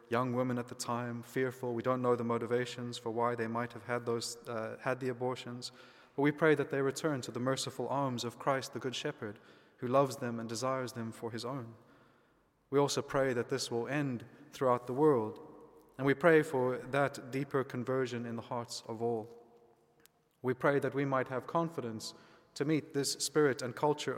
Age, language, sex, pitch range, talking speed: 30-49, English, male, 120-140 Hz, 200 wpm